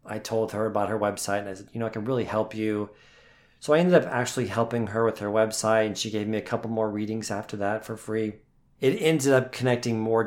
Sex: male